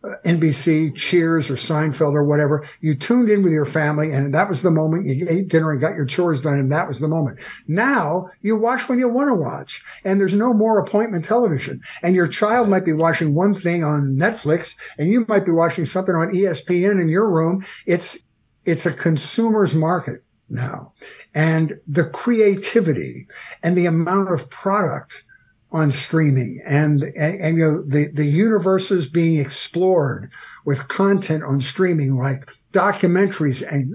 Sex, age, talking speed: male, 60-79, 175 wpm